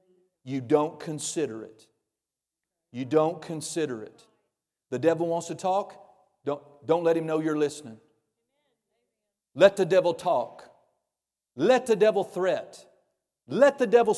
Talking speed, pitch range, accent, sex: 130 wpm, 125-190 Hz, American, male